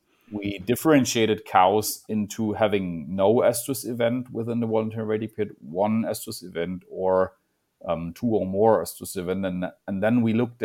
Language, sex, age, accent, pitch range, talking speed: English, male, 30-49, German, 95-110 Hz, 160 wpm